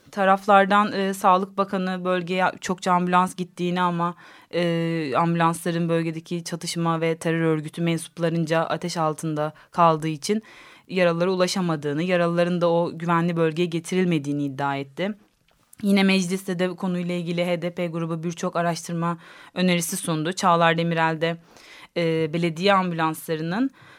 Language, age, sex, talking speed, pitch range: Turkish, 30-49, female, 120 wpm, 160-185 Hz